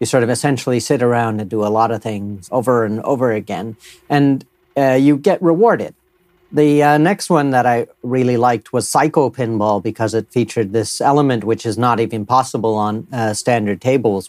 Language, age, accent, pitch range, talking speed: English, 40-59, American, 110-140 Hz, 195 wpm